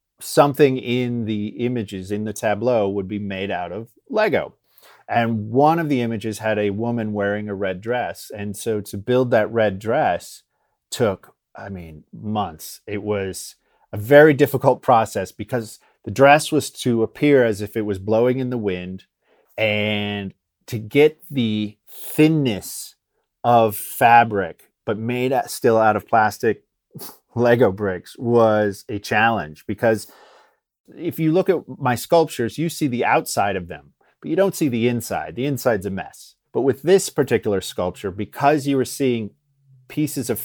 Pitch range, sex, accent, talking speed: 105-135 Hz, male, American, 160 wpm